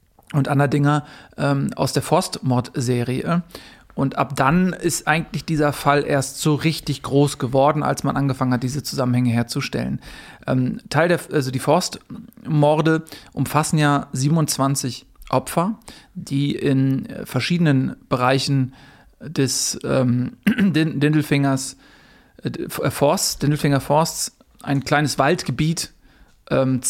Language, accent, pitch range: German, German, 130-155 Hz